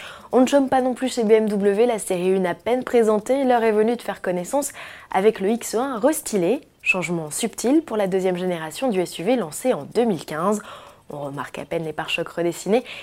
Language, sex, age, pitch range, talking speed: French, female, 20-39, 175-245 Hz, 195 wpm